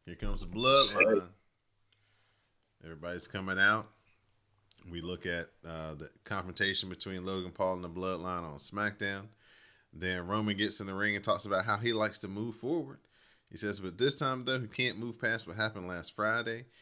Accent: American